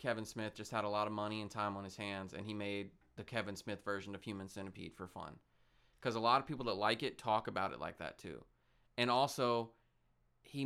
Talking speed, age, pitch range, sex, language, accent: 235 wpm, 20-39, 100-120 Hz, male, English, American